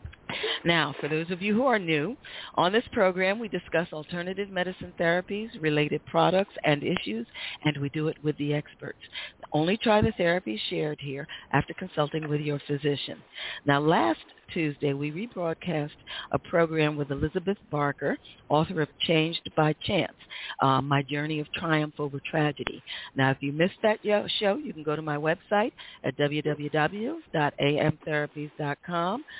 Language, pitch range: English, 145-185 Hz